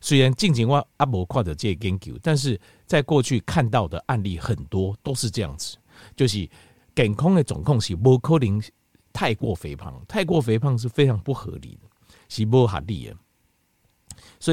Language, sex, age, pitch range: Chinese, male, 50-69, 100-135 Hz